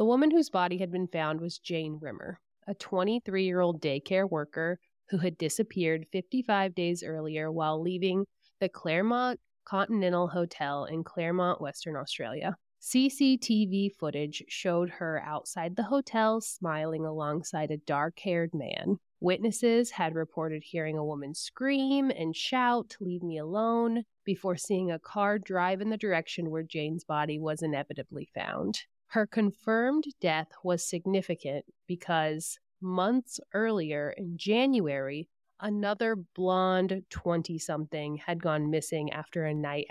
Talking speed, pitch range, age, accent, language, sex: 130 wpm, 160-200 Hz, 30-49, American, English, female